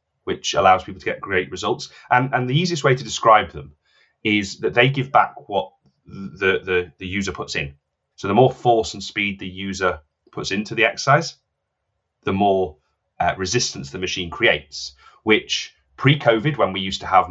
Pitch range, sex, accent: 90-115 Hz, male, British